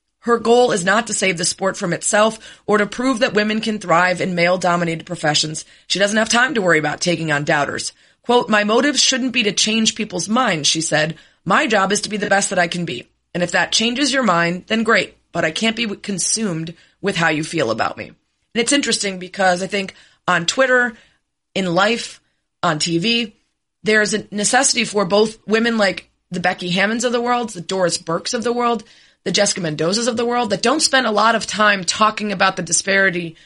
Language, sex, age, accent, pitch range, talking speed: English, female, 30-49, American, 175-225 Hz, 215 wpm